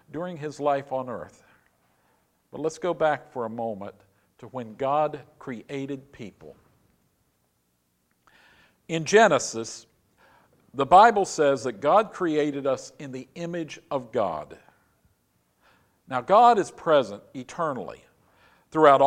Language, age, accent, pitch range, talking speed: English, 50-69, American, 135-175 Hz, 115 wpm